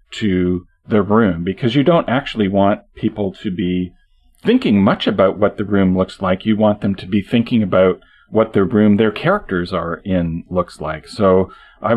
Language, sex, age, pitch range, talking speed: English, male, 40-59, 90-105 Hz, 185 wpm